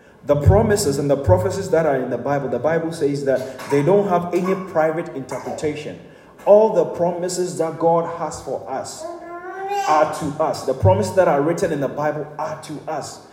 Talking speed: 190 wpm